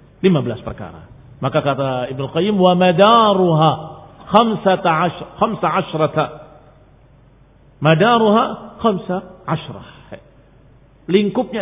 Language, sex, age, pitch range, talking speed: Indonesian, male, 50-69, 140-165 Hz, 55 wpm